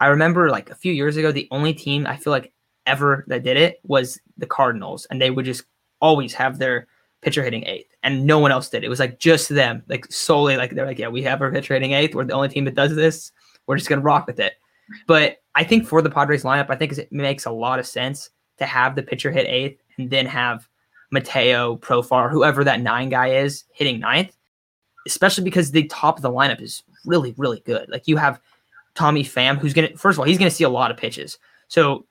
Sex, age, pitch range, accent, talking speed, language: male, 20-39, 130-155 Hz, American, 245 wpm, English